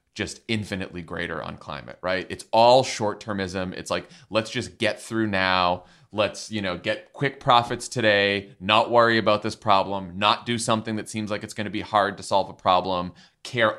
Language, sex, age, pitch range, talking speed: English, male, 30-49, 95-120 Hz, 190 wpm